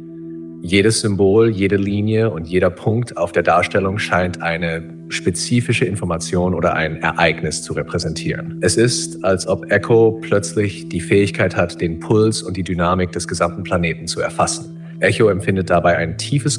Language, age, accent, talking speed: German, 30-49, German, 155 wpm